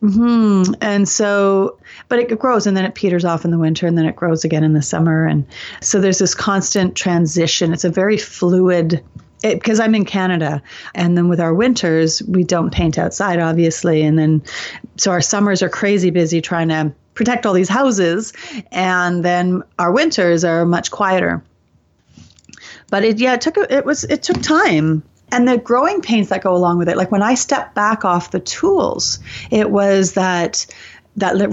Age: 30-49